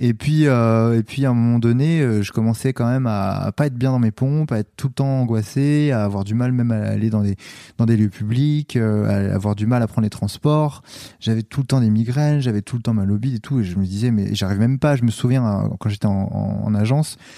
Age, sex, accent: 20-39, male, French